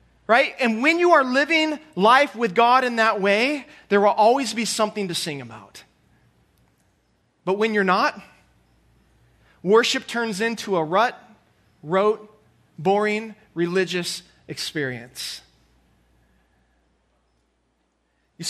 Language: English